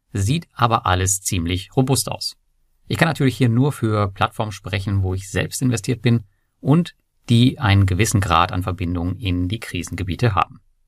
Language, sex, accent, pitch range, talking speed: German, male, German, 95-120 Hz, 165 wpm